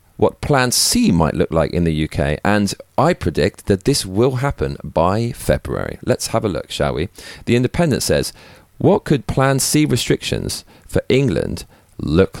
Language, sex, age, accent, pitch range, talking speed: English, male, 40-59, British, 85-130 Hz, 170 wpm